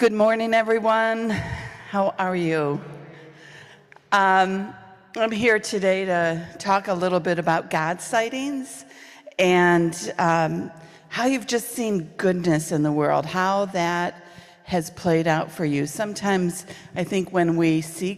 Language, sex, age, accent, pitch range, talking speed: English, female, 50-69, American, 155-185 Hz, 135 wpm